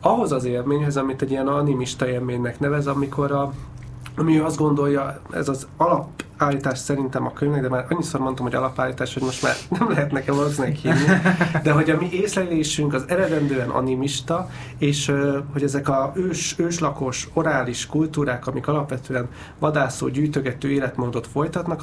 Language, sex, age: Hungarian, male, 30-49